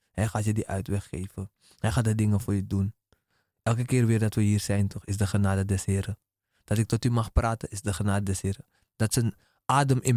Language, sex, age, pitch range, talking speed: Dutch, male, 20-39, 100-130 Hz, 240 wpm